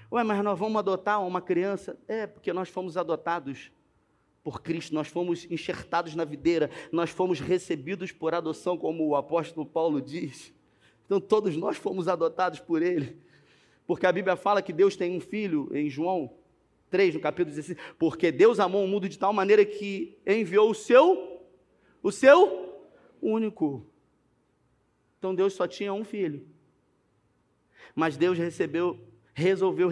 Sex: male